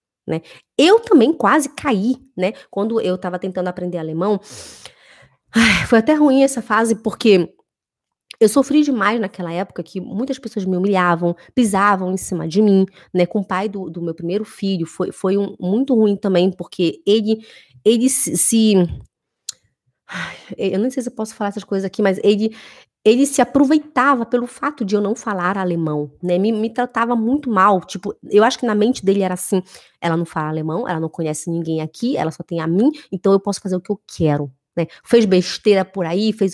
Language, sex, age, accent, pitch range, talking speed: Portuguese, female, 20-39, Brazilian, 180-235 Hz, 190 wpm